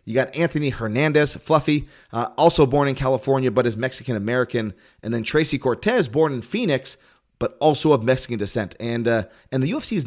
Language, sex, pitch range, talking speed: English, male, 115-145 Hz, 185 wpm